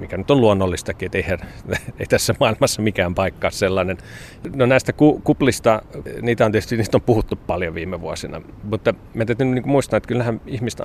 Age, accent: 40-59, native